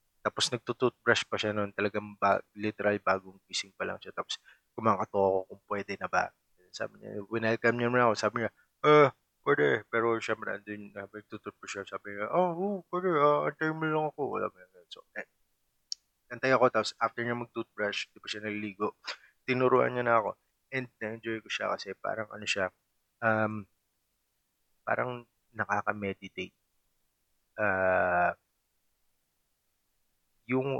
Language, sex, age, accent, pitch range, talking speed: Filipino, male, 20-39, native, 100-120 Hz, 150 wpm